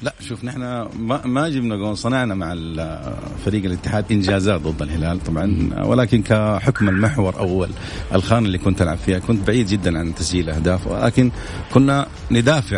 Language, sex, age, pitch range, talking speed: English, male, 40-59, 85-115 Hz, 155 wpm